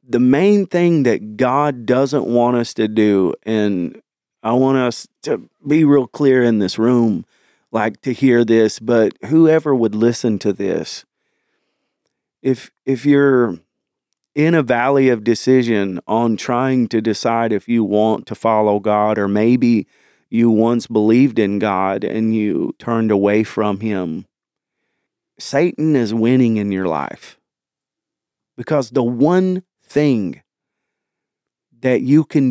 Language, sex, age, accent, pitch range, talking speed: English, male, 40-59, American, 110-135 Hz, 140 wpm